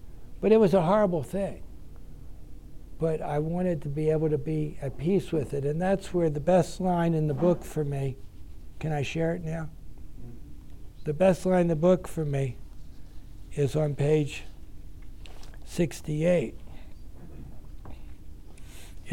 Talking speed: 145 wpm